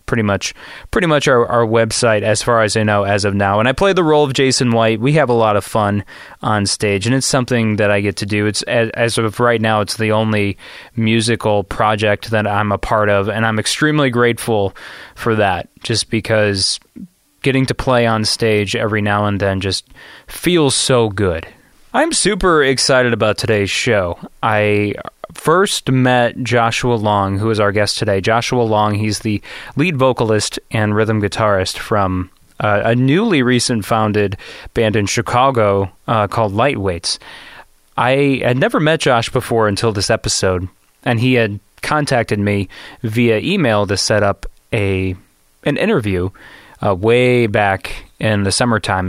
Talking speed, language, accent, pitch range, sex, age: 170 wpm, English, American, 105-120 Hz, male, 20-39